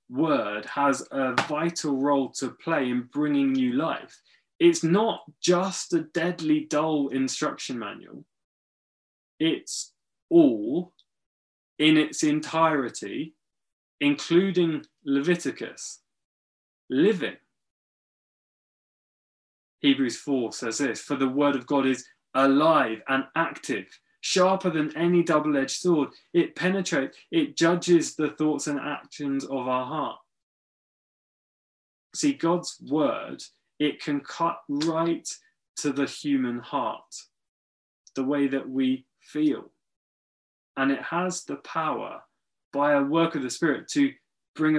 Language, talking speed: English, 115 wpm